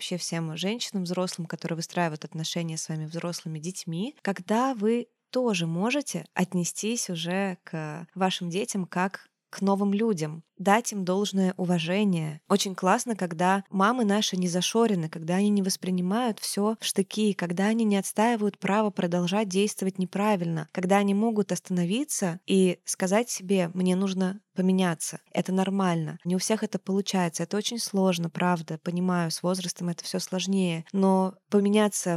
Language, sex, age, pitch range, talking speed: Russian, female, 20-39, 175-205 Hz, 145 wpm